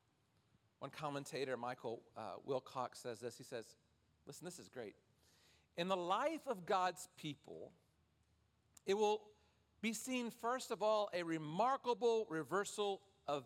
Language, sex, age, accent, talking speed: English, male, 50-69, American, 135 wpm